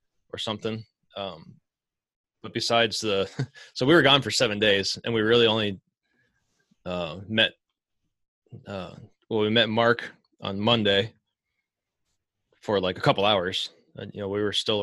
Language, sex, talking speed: English, male, 150 wpm